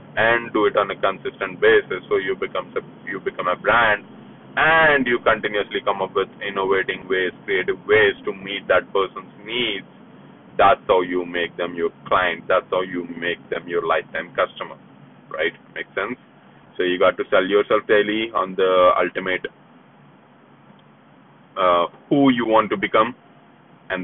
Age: 30-49